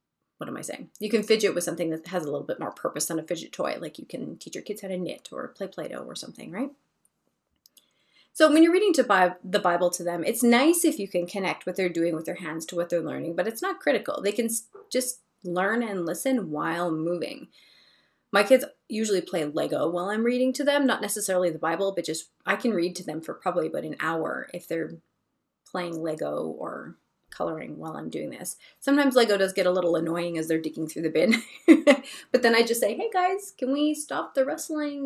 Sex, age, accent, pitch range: female, 30-49, American, 175-260 Hz